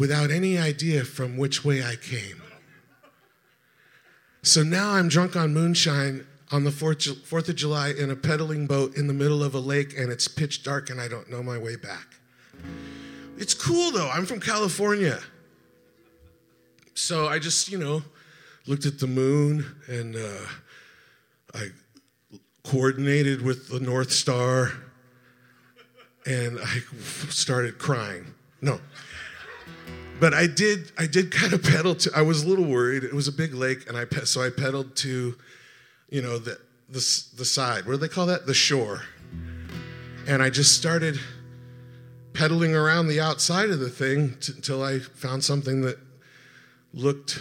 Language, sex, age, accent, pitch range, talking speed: English, male, 50-69, American, 125-150 Hz, 160 wpm